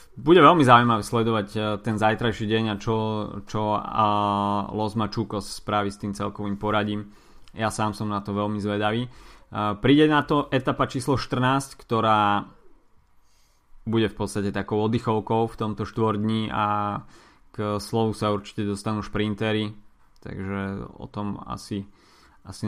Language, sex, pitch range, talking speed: Slovak, male, 105-115 Hz, 130 wpm